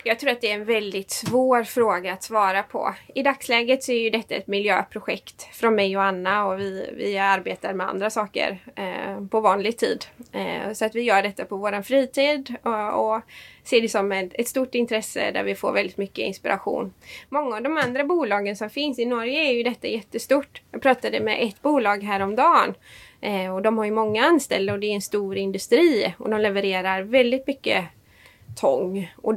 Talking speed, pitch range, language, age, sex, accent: 195 wpm, 200-245 Hz, Swedish, 20-39, female, native